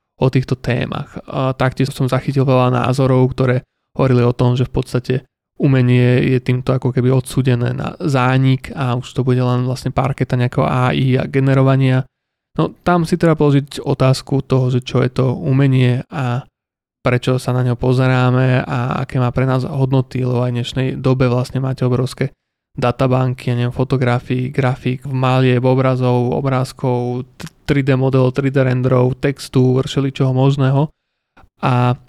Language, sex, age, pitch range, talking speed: Slovak, male, 20-39, 125-135 Hz, 155 wpm